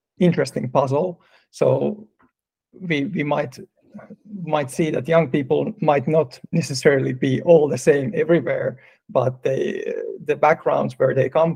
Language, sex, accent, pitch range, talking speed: Finnish, male, native, 150-200 Hz, 135 wpm